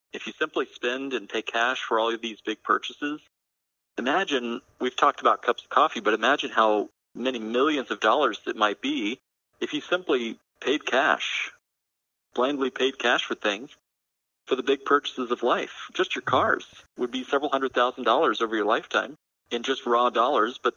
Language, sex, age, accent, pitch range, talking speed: English, male, 40-59, American, 105-130 Hz, 180 wpm